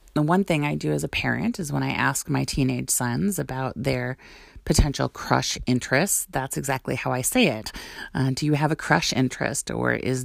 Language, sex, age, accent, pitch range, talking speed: English, female, 30-49, American, 125-165 Hz, 205 wpm